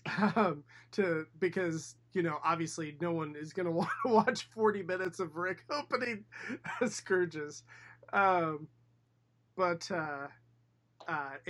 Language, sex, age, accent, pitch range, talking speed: English, male, 20-39, American, 145-180 Hz, 125 wpm